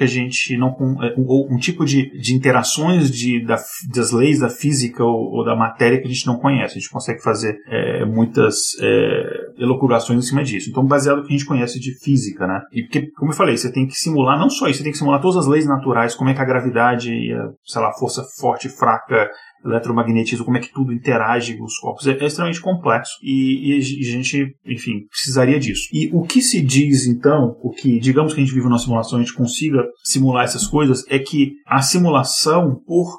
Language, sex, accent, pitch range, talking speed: Portuguese, male, Brazilian, 120-140 Hz, 230 wpm